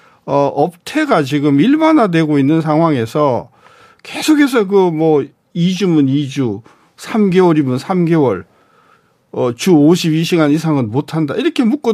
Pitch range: 150-235 Hz